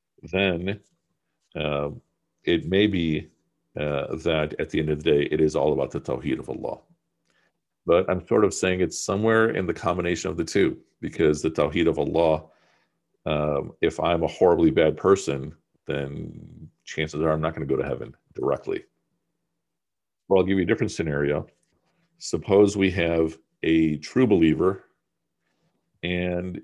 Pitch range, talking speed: 80-95 Hz, 160 wpm